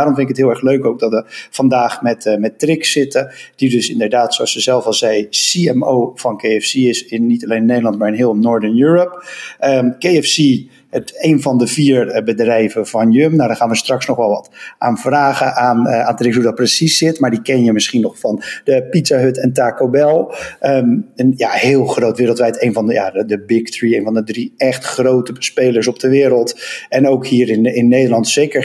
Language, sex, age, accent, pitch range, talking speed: Dutch, male, 50-69, Dutch, 115-135 Hz, 225 wpm